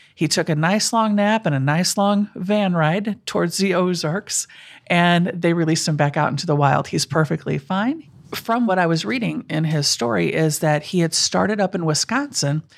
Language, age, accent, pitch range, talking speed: English, 50-69, American, 155-205 Hz, 200 wpm